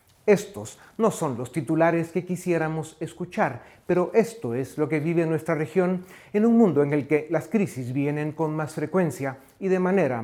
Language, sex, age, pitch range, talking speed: Spanish, male, 40-59, 140-180 Hz, 180 wpm